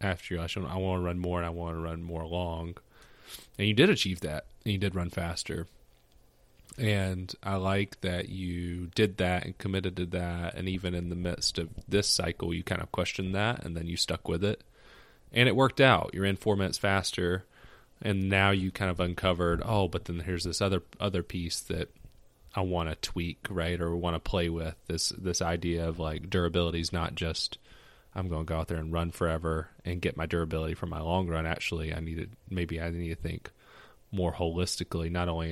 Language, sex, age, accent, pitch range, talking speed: English, male, 30-49, American, 85-95 Hz, 210 wpm